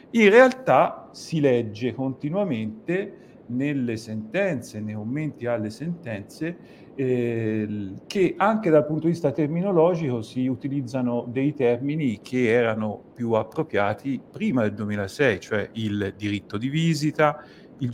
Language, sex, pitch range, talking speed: Italian, male, 115-155 Hz, 120 wpm